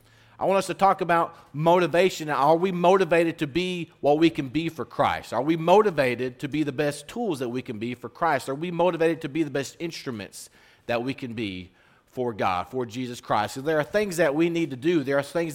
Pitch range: 125-165 Hz